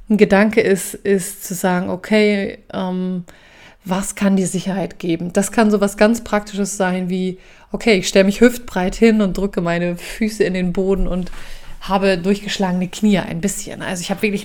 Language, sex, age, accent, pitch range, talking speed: German, female, 30-49, German, 190-215 Hz, 185 wpm